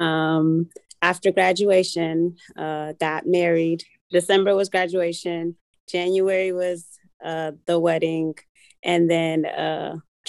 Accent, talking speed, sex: American, 100 wpm, female